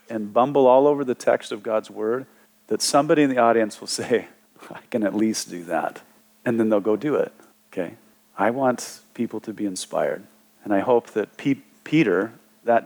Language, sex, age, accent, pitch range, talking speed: English, male, 40-59, American, 100-130 Hz, 190 wpm